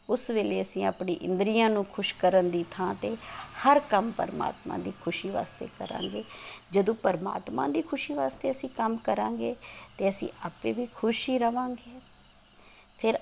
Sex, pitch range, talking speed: female, 185-240 Hz, 150 wpm